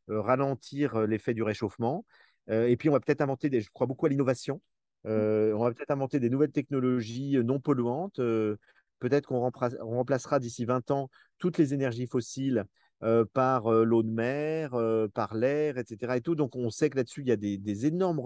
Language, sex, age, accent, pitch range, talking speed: French, male, 40-59, French, 110-135 Hz, 205 wpm